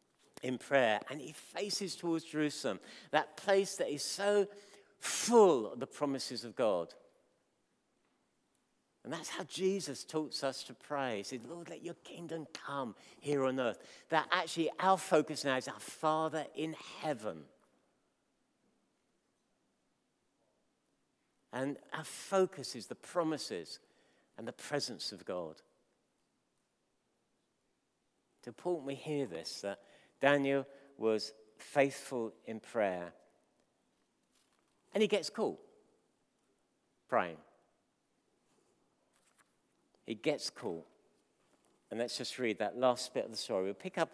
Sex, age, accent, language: male, 50-69, British, English